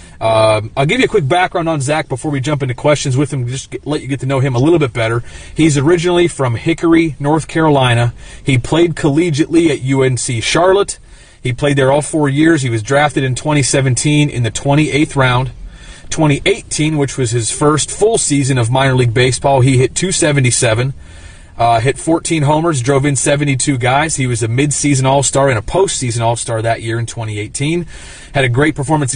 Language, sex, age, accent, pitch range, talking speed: English, male, 30-49, American, 125-155 Hz, 190 wpm